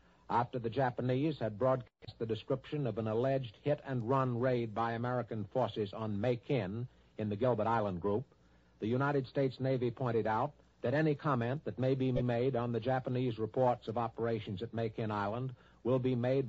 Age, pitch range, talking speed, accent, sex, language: 60-79, 110-135 Hz, 180 wpm, American, male, English